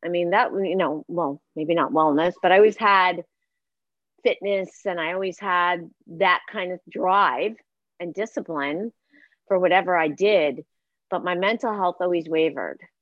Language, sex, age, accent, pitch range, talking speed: English, female, 40-59, American, 180-235 Hz, 155 wpm